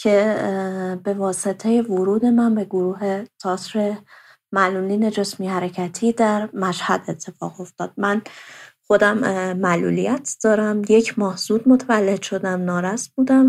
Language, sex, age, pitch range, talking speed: English, female, 30-49, 195-235 Hz, 110 wpm